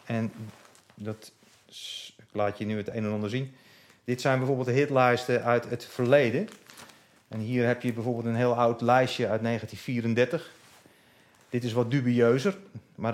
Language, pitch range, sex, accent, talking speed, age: Dutch, 115-140 Hz, male, Dutch, 165 wpm, 40-59